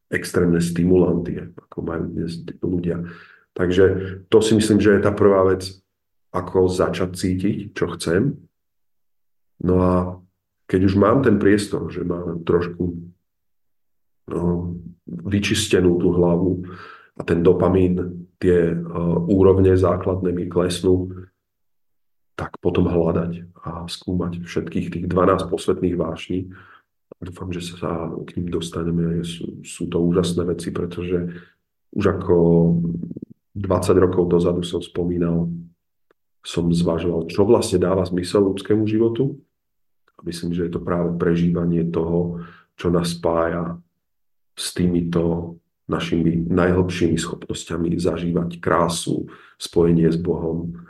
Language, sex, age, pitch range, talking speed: Slovak, male, 40-59, 85-90 Hz, 120 wpm